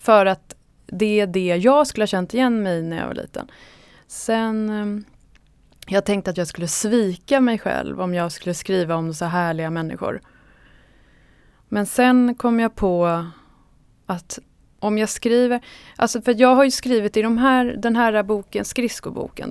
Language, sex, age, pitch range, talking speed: Swedish, female, 20-39, 180-235 Hz, 165 wpm